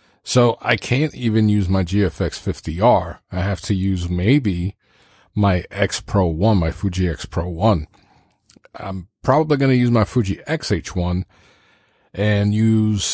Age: 40-59